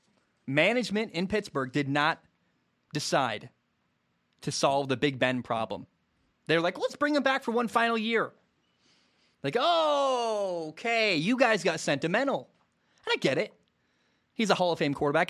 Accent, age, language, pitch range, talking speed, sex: American, 20-39, English, 135-205 Hz, 155 wpm, male